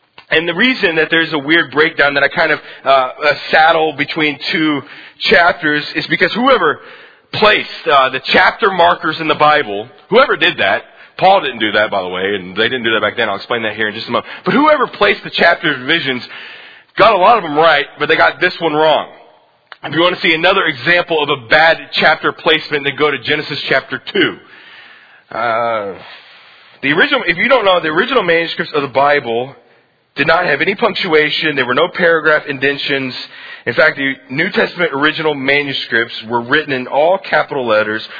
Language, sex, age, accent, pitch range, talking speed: English, male, 30-49, American, 135-165 Hz, 195 wpm